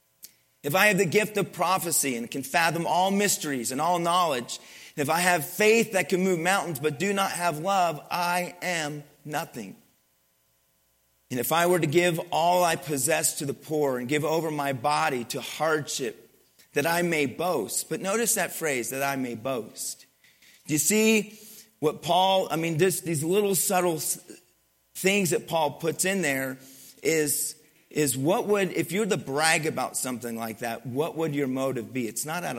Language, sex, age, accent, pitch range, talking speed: English, male, 40-59, American, 135-175 Hz, 180 wpm